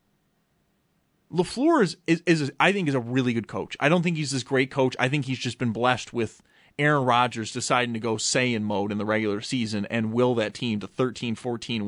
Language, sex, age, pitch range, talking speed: English, male, 30-49, 115-160 Hz, 220 wpm